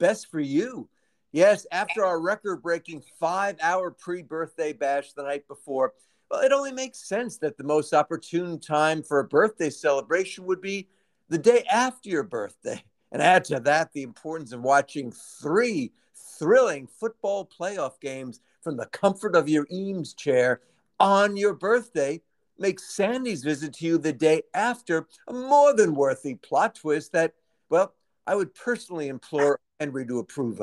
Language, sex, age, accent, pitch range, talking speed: English, male, 50-69, American, 145-205 Hz, 155 wpm